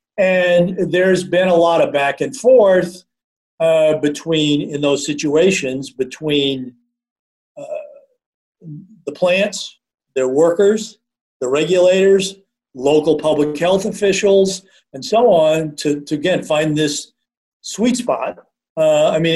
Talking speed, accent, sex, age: 120 wpm, American, male, 50-69